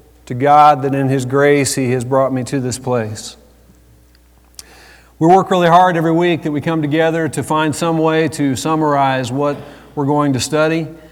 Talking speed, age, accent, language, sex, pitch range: 185 wpm, 50-69, American, English, male, 150-185 Hz